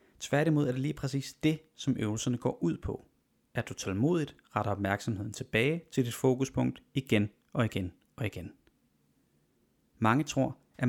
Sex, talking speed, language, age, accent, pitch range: male, 155 wpm, Danish, 30-49, native, 105-140 Hz